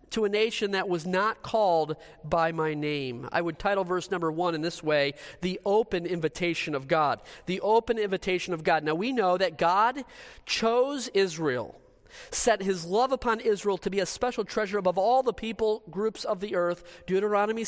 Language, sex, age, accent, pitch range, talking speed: English, male, 40-59, American, 175-215 Hz, 185 wpm